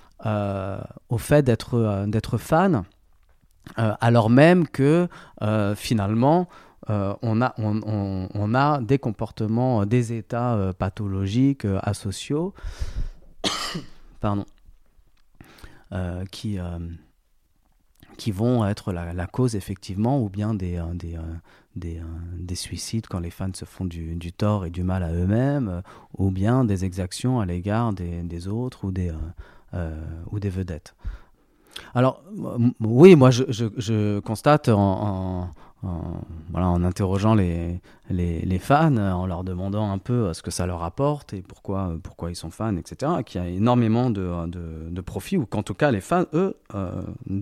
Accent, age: French, 40-59